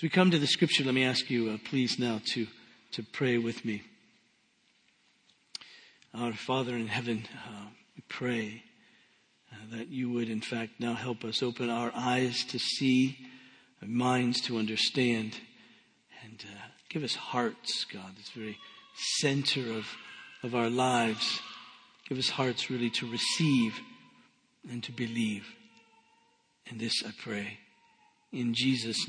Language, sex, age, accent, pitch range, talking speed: English, male, 50-69, American, 115-145 Hz, 145 wpm